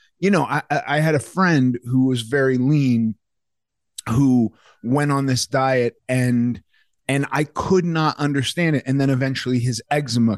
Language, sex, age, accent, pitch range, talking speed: English, male, 30-49, American, 120-155 Hz, 160 wpm